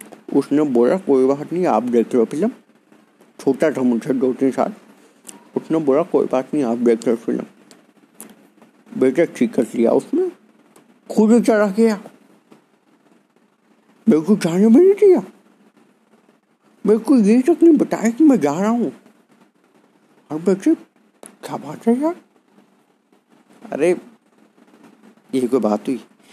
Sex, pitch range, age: male, 130-210 Hz, 50-69